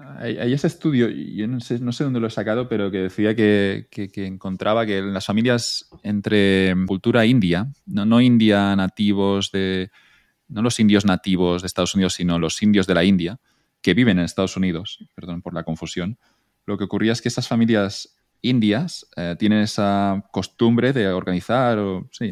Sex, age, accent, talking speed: male, 20-39, Spanish, 185 wpm